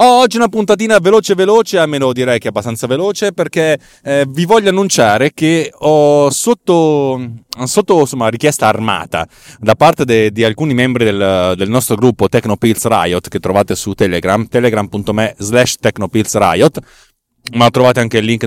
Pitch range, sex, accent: 105-140 Hz, male, native